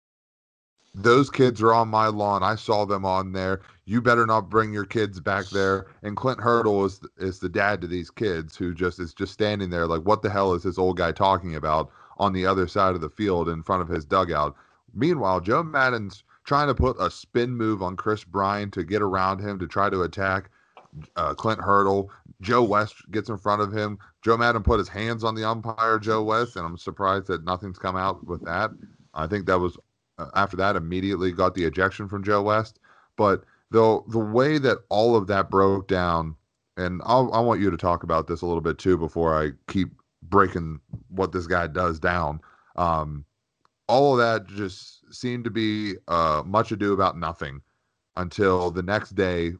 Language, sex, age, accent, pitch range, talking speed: English, male, 30-49, American, 90-105 Hz, 205 wpm